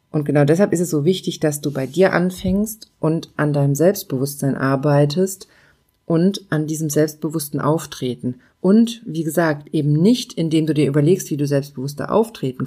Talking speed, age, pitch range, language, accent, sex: 165 wpm, 40-59, 150-180 Hz, German, German, female